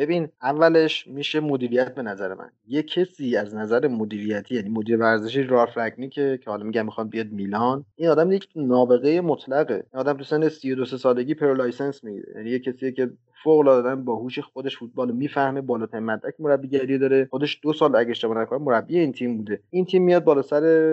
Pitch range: 120-145 Hz